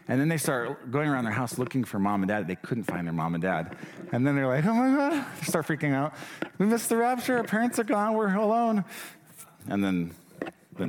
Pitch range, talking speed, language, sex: 95-140 Hz, 240 wpm, English, male